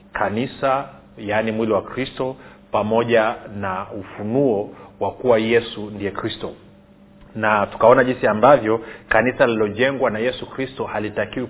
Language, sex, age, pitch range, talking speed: Swahili, male, 40-59, 100-125 Hz, 120 wpm